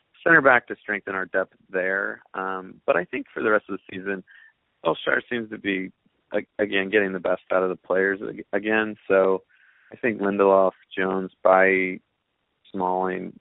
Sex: male